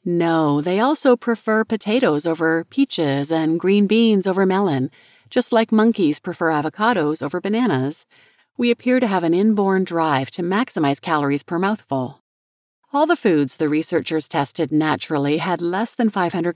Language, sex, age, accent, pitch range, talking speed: English, female, 40-59, American, 150-200 Hz, 150 wpm